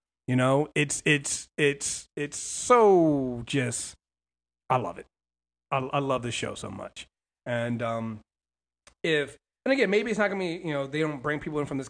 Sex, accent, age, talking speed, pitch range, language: male, American, 30-49, 185 wpm, 125-170 Hz, English